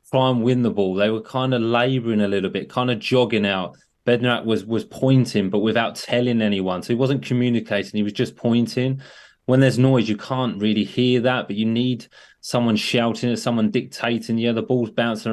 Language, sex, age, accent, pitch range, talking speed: English, male, 30-49, British, 110-130 Hz, 210 wpm